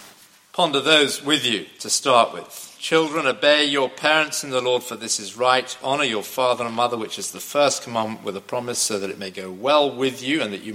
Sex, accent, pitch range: male, British, 115-155 Hz